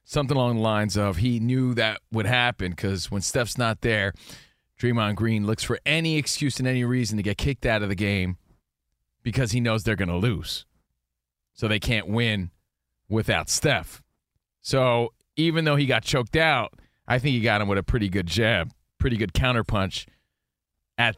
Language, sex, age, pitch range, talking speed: English, male, 40-59, 100-145 Hz, 185 wpm